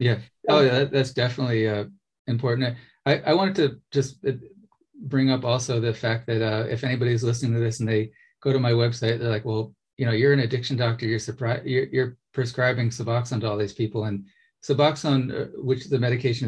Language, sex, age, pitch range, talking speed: English, male, 30-49, 110-125 Hz, 200 wpm